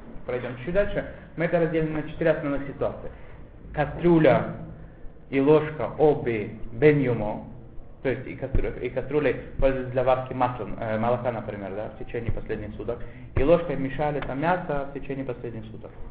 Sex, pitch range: male, 125-170 Hz